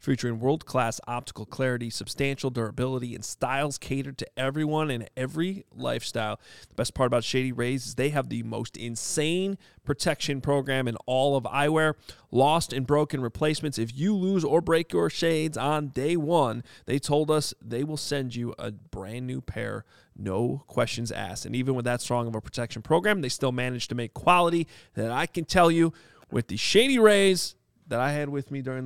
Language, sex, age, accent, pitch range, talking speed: English, male, 30-49, American, 115-155 Hz, 185 wpm